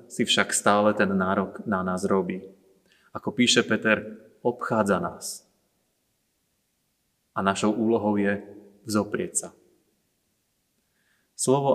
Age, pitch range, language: 30-49, 100-115 Hz, Slovak